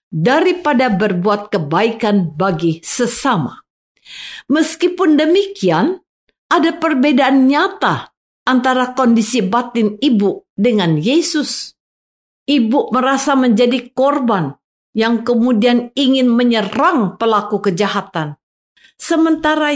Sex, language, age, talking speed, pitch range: female, Indonesian, 50-69, 80 wpm, 195-280 Hz